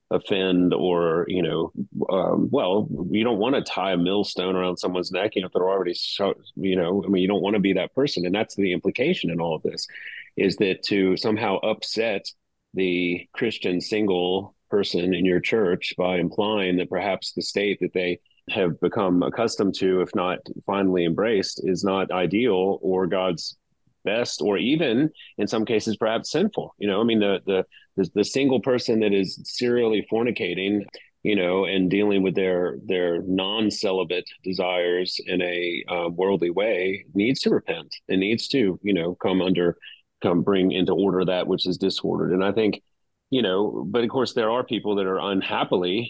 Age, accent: 30-49, American